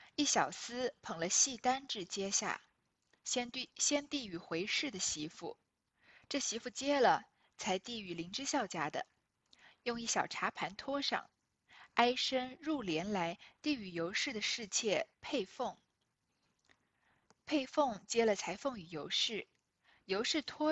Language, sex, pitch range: Chinese, female, 190-270 Hz